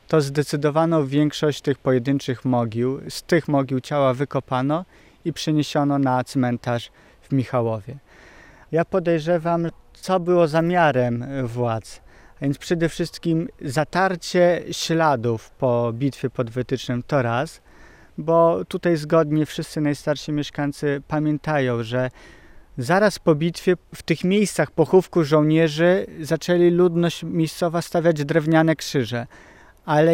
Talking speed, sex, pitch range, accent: 115 wpm, male, 140-175 Hz, native